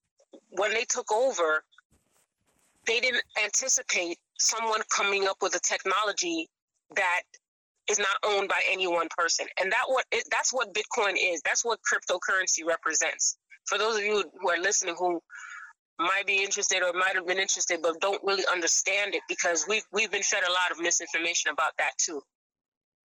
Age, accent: 20-39, American